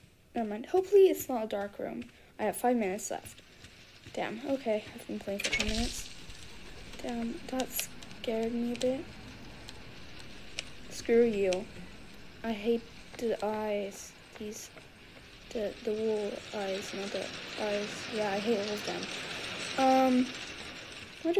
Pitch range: 215-275 Hz